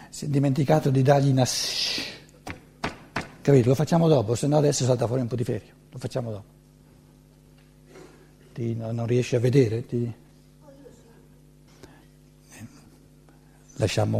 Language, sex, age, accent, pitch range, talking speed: Italian, male, 60-79, native, 115-145 Hz, 125 wpm